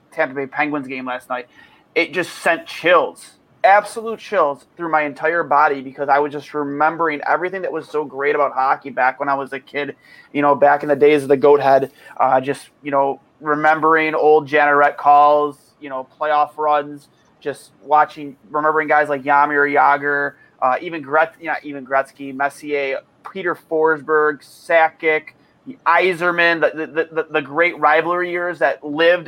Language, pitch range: English, 140-155 Hz